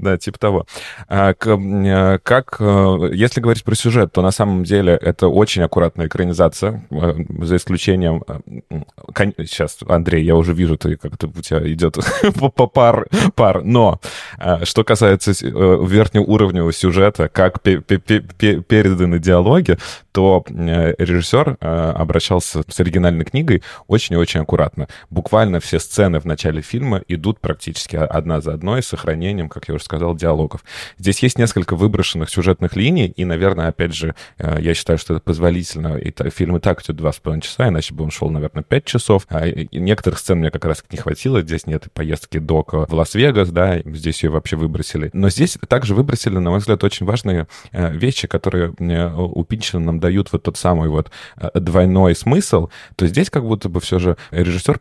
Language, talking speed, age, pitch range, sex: Russian, 155 wpm, 20-39, 85-105 Hz, male